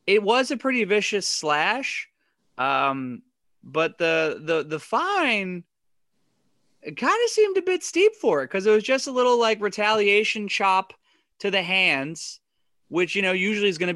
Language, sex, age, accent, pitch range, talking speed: English, male, 20-39, American, 125-200 Hz, 165 wpm